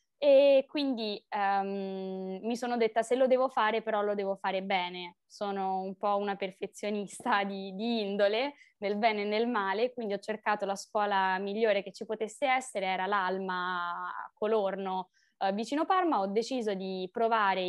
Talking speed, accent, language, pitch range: 155 wpm, native, Italian, 195-230 Hz